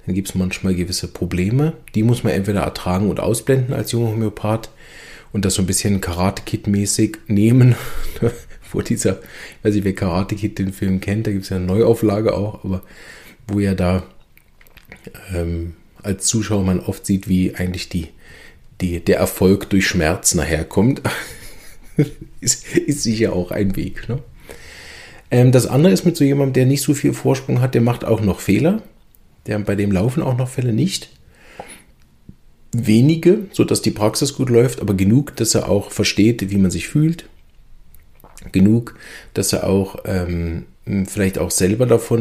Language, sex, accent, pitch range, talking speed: German, male, German, 95-115 Hz, 170 wpm